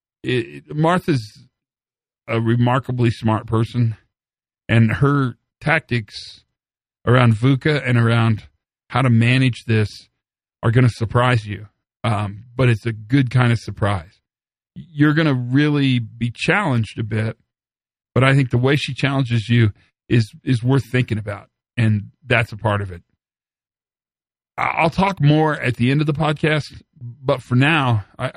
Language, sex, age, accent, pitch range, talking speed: English, male, 50-69, American, 110-135 Hz, 145 wpm